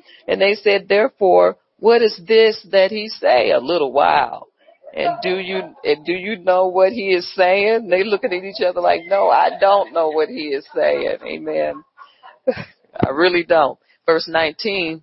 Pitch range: 150-205 Hz